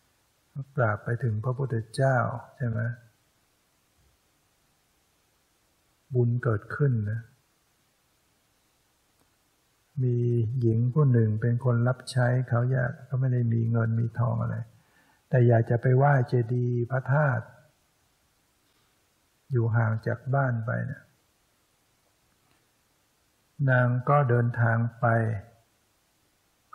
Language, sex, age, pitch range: English, male, 60-79, 115-130 Hz